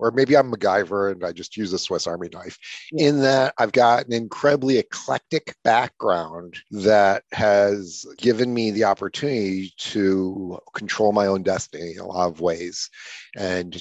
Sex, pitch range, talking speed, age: male, 95-110 Hz, 160 wpm, 40-59